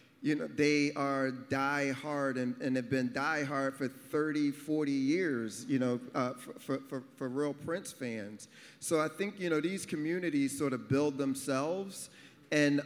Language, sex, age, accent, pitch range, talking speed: English, male, 40-59, American, 130-145 Hz, 175 wpm